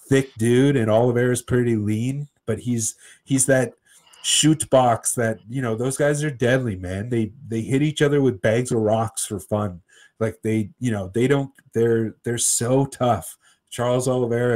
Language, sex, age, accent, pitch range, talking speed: English, male, 30-49, American, 105-120 Hz, 180 wpm